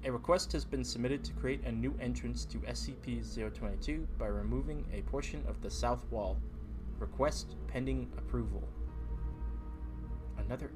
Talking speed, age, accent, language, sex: 135 wpm, 20-39, American, English, male